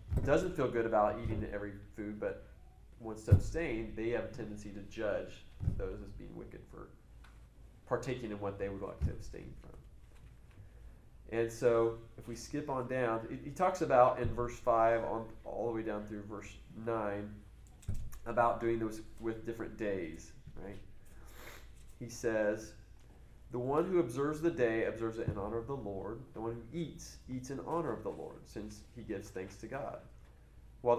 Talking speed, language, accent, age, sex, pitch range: 170 wpm, English, American, 30-49, male, 105-120 Hz